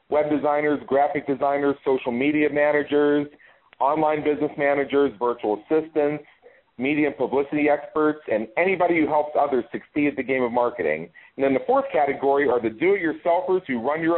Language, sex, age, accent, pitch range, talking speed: English, male, 40-59, American, 135-170 Hz, 160 wpm